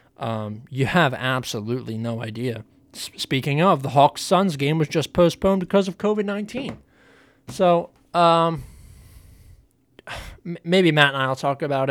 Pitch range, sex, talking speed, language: 125-160 Hz, male, 130 wpm, English